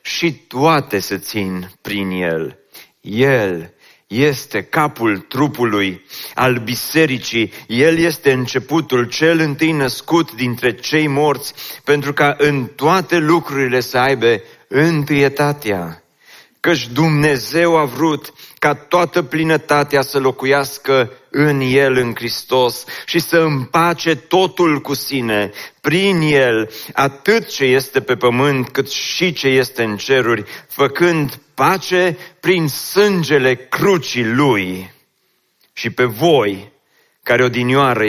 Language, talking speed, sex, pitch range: Romanian, 115 wpm, male, 125-160 Hz